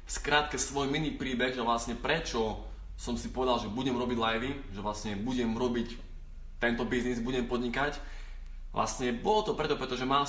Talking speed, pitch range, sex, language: 165 wpm, 110-130 Hz, male, Slovak